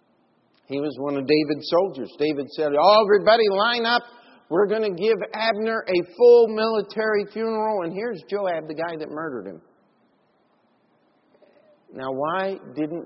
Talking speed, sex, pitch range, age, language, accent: 145 wpm, male, 120-155 Hz, 50-69, English, American